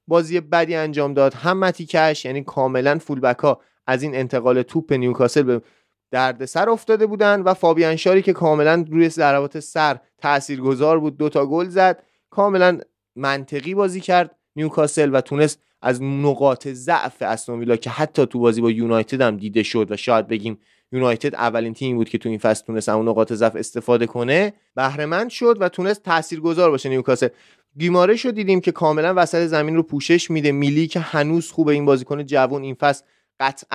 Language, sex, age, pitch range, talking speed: Persian, male, 30-49, 130-165 Hz, 160 wpm